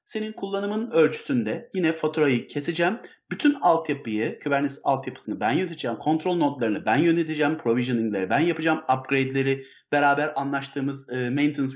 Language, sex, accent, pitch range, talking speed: Turkish, male, native, 125-175 Hz, 125 wpm